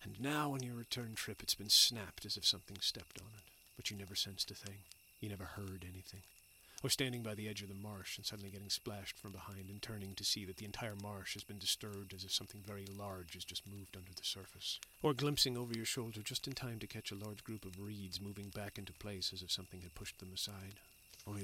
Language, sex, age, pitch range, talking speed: English, male, 40-59, 90-105 Hz, 245 wpm